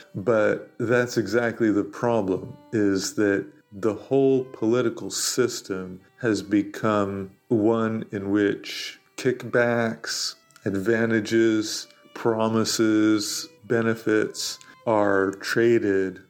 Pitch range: 95-115 Hz